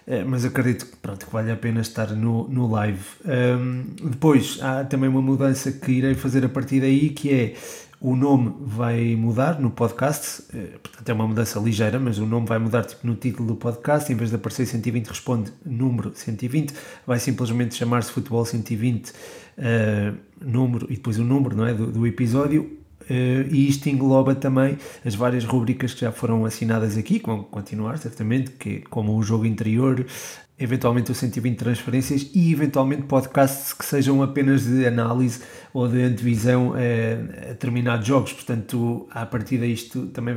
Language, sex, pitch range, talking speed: Portuguese, male, 115-130 Hz, 170 wpm